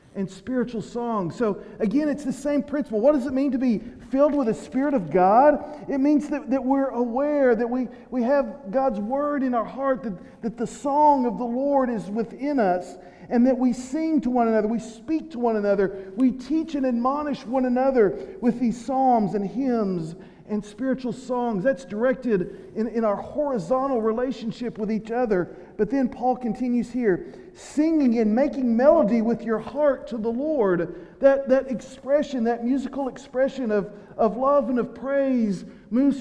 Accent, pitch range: American, 210-265 Hz